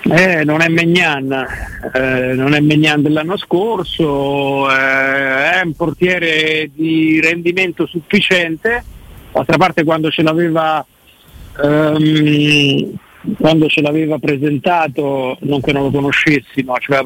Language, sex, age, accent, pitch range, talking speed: Italian, male, 50-69, native, 145-170 Hz, 125 wpm